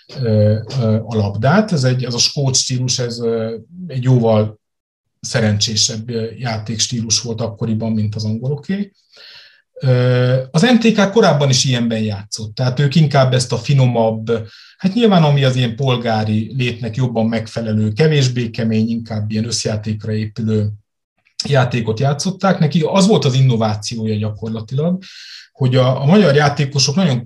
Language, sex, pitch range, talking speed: Hungarian, male, 110-150 Hz, 130 wpm